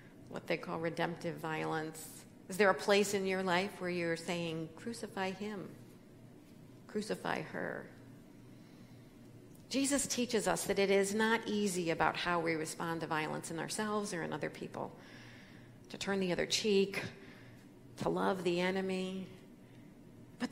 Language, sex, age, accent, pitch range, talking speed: English, female, 50-69, American, 180-225 Hz, 145 wpm